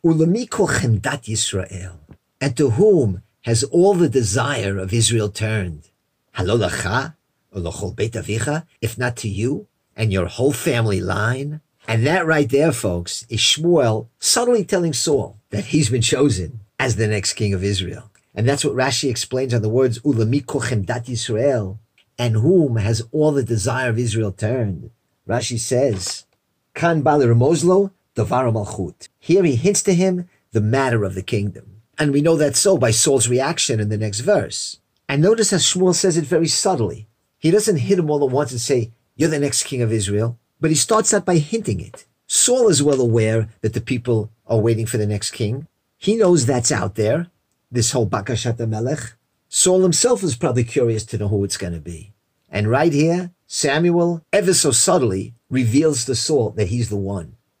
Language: English